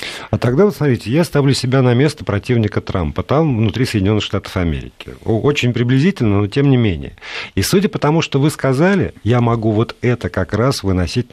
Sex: male